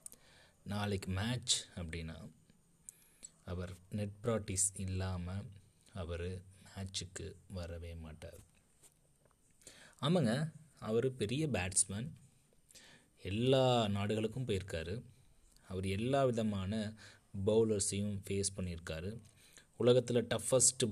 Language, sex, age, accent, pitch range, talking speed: Tamil, male, 20-39, native, 95-120 Hz, 75 wpm